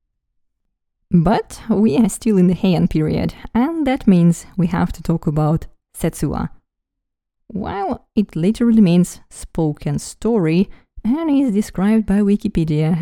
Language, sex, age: English, female, 20-39